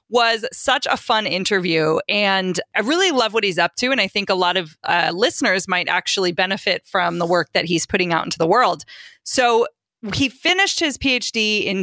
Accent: American